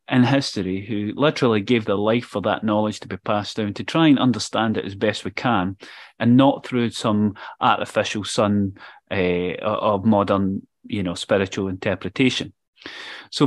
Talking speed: 165 wpm